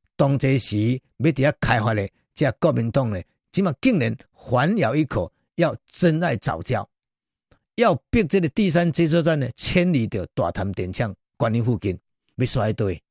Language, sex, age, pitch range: Chinese, male, 50-69, 115-170 Hz